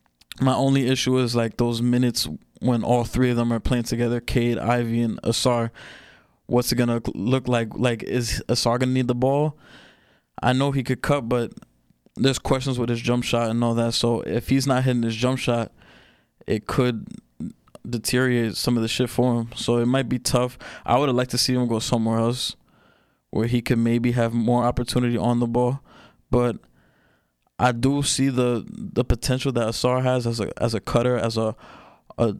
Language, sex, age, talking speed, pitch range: English, male, 20-39, 200 wpm, 115-125 Hz